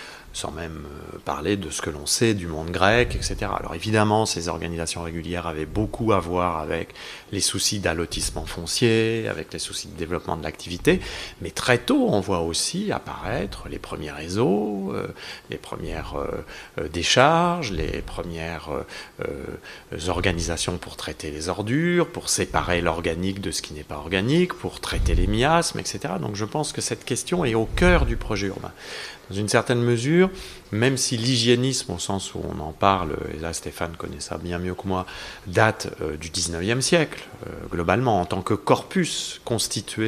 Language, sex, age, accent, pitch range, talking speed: French, male, 40-59, French, 85-120 Hz, 170 wpm